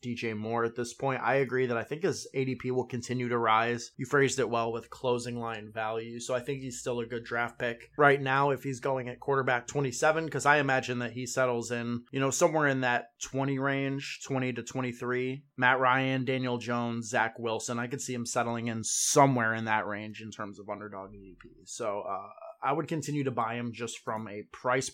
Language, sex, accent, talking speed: English, male, American, 220 wpm